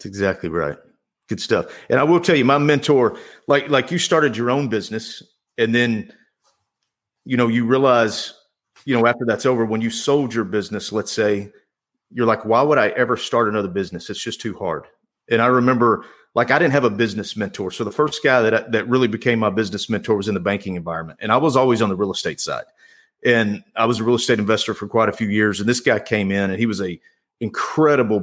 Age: 40-59